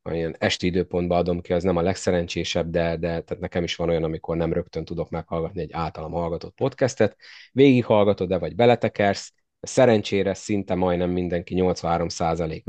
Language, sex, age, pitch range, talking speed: Hungarian, male, 30-49, 85-95 Hz, 155 wpm